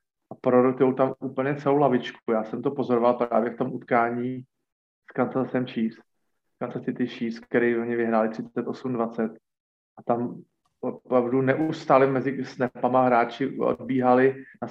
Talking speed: 130 wpm